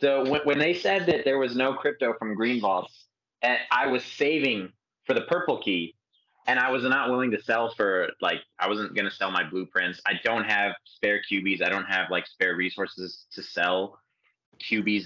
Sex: male